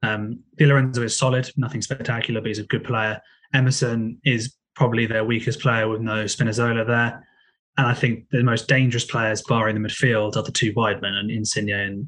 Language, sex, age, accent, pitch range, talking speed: English, male, 20-39, British, 115-135 Hz, 200 wpm